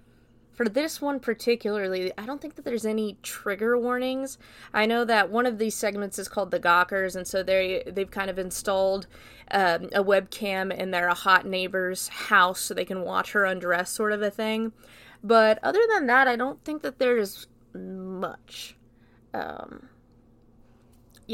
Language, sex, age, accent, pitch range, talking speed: English, female, 20-39, American, 185-230 Hz, 170 wpm